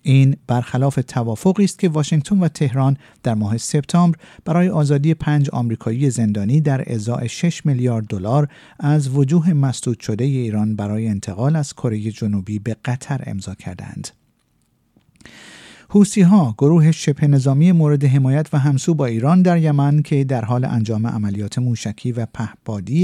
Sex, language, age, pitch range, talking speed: male, Persian, 50-69, 115-155 Hz, 145 wpm